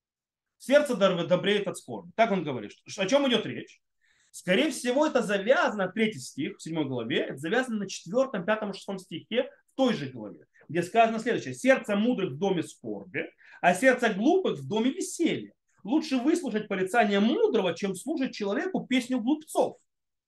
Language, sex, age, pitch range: Russian, male, 30-49, 190-260 Hz